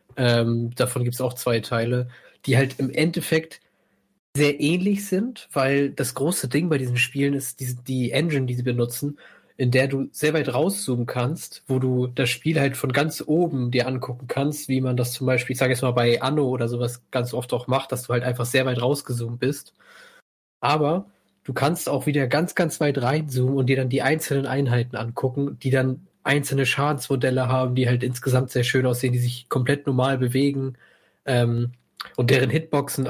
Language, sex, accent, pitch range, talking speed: German, male, German, 125-140 Hz, 195 wpm